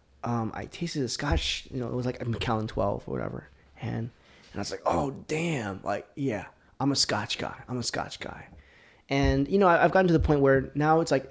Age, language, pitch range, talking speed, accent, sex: 20-39, English, 110-150 Hz, 240 wpm, American, male